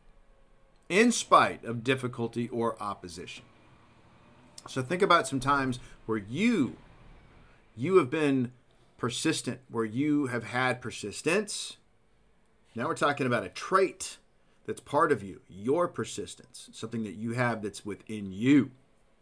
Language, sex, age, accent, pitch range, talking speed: English, male, 40-59, American, 115-140 Hz, 130 wpm